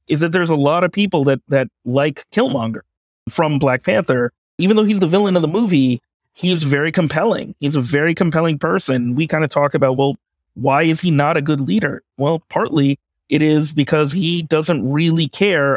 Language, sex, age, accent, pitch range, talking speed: English, male, 30-49, American, 130-160 Hz, 200 wpm